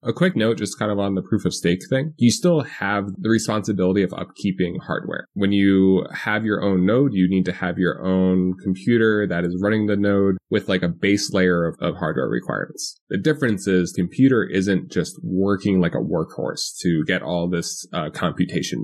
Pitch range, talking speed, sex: 90-110 Hz, 200 wpm, male